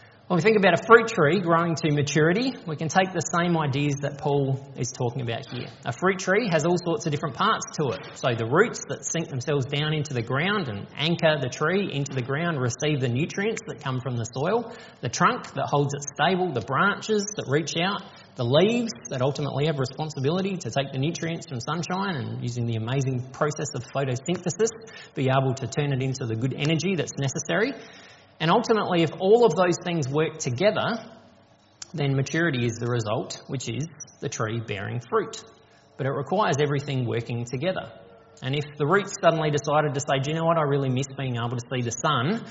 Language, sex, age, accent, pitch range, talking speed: English, male, 20-39, Australian, 130-165 Hz, 205 wpm